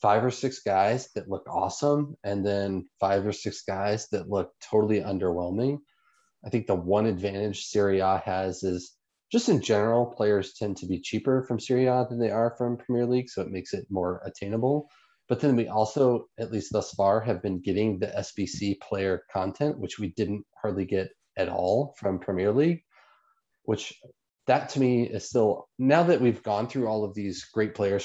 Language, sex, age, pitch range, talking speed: English, male, 30-49, 100-120 Hz, 190 wpm